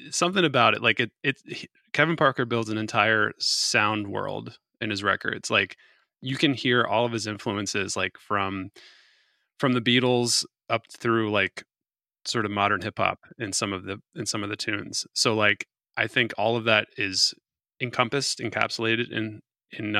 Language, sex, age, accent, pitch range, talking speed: English, male, 20-39, American, 105-125 Hz, 170 wpm